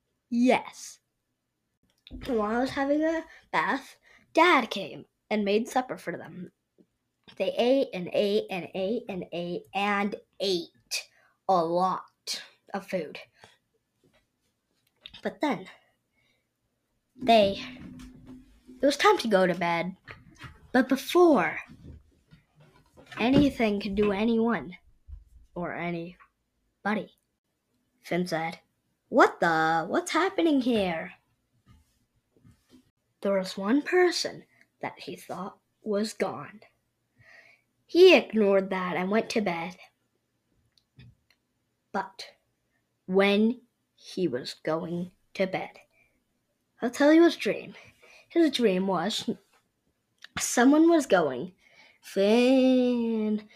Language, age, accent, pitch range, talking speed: English, 20-39, American, 175-260 Hz, 100 wpm